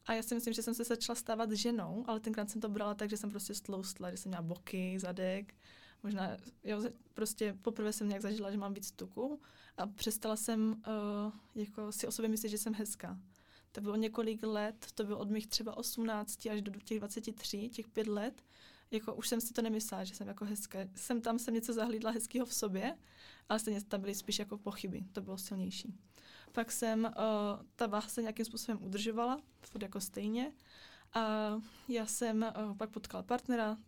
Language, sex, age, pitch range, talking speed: Czech, female, 20-39, 205-230 Hz, 195 wpm